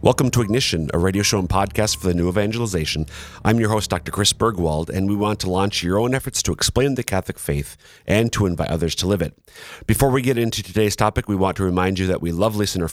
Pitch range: 85-105 Hz